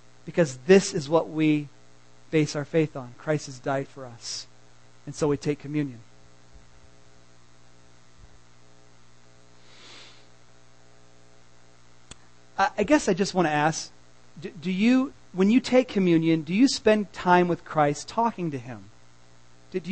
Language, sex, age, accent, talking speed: English, male, 40-59, American, 125 wpm